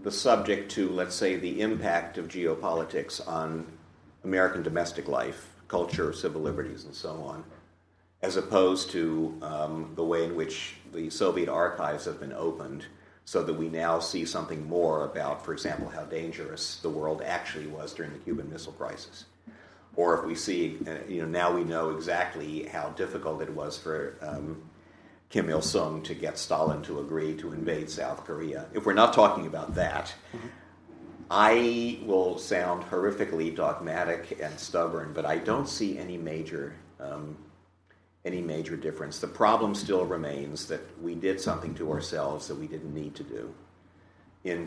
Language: English